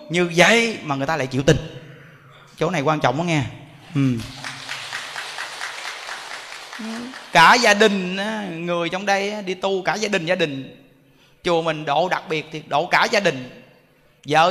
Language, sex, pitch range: Vietnamese, male, 160-220 Hz